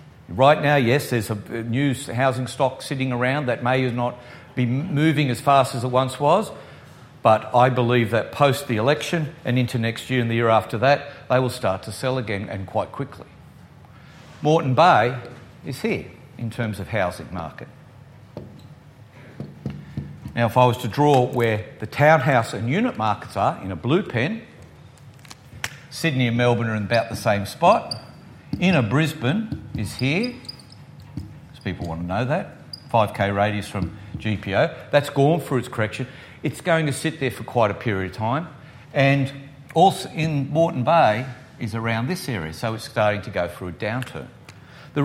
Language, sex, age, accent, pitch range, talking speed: English, male, 60-79, Australian, 115-145 Hz, 170 wpm